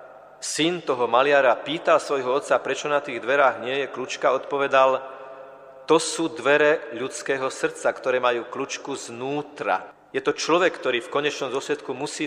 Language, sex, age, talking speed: Slovak, male, 40-59, 150 wpm